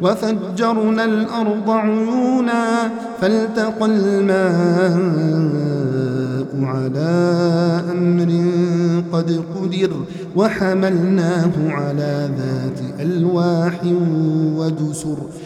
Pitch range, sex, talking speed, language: 175-225 Hz, male, 55 wpm, Arabic